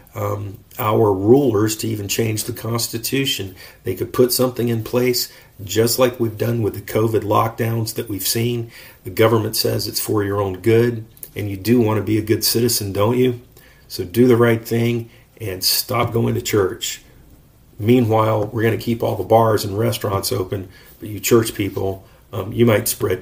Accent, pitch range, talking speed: American, 100-120 Hz, 190 wpm